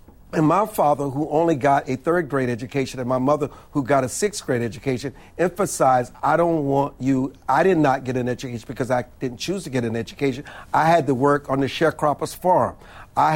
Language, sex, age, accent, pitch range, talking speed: English, male, 50-69, American, 135-165 Hz, 210 wpm